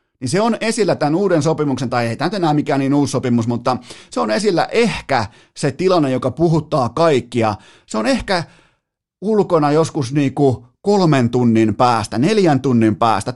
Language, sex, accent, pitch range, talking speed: Finnish, male, native, 130-180 Hz, 165 wpm